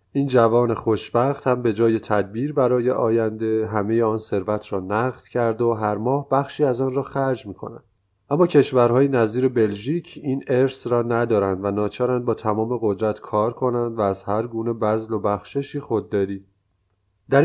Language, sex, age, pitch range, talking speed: Persian, male, 30-49, 105-130 Hz, 165 wpm